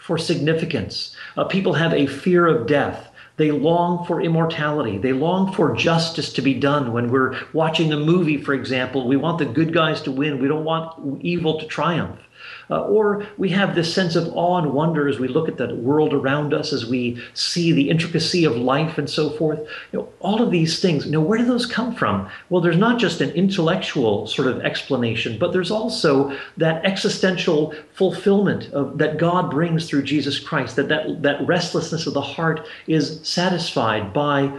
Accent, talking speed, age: American, 195 wpm, 40-59